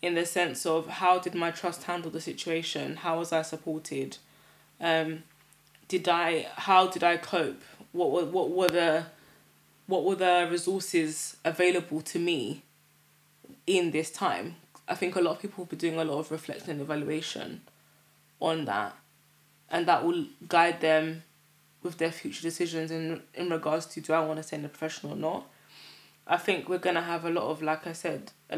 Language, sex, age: English, female, 20-39